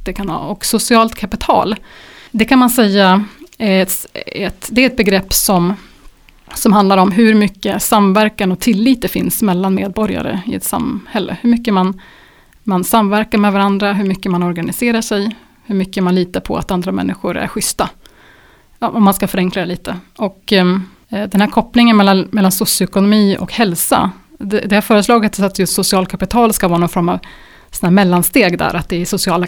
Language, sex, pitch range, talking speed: Swedish, female, 185-215 Hz, 185 wpm